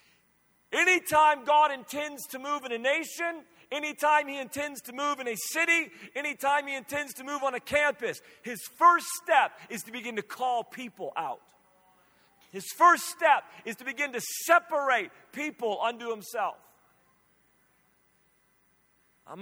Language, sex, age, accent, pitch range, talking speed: English, male, 40-59, American, 215-275 Hz, 140 wpm